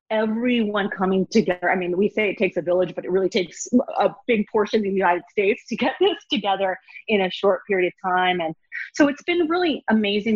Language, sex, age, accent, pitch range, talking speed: English, female, 30-49, American, 170-210 Hz, 220 wpm